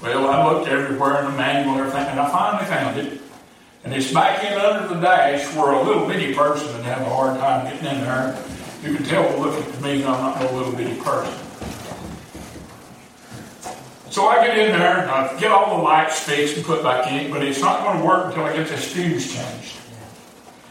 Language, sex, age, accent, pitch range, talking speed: English, male, 60-79, American, 140-200 Hz, 220 wpm